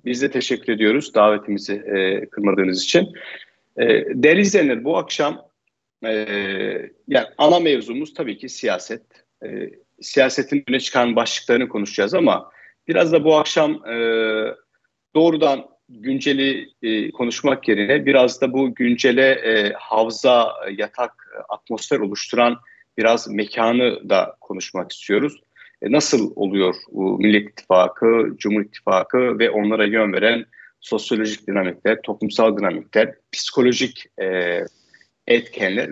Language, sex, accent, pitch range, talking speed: Turkish, male, native, 110-155 Hz, 110 wpm